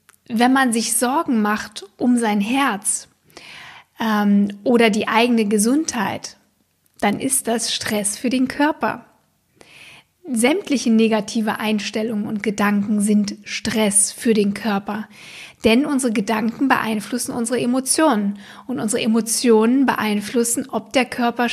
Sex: female